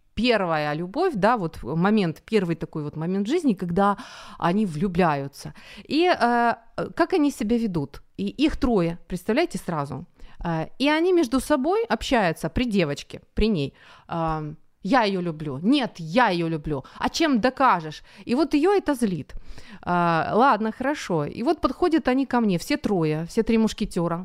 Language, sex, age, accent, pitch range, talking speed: Ukrainian, female, 30-49, native, 180-295 Hz, 160 wpm